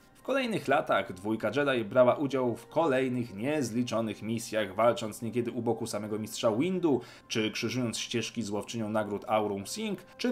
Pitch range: 110-140 Hz